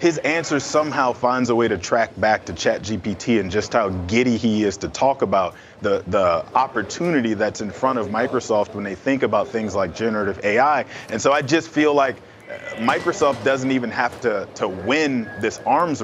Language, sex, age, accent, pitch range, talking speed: English, male, 30-49, American, 105-135 Hz, 190 wpm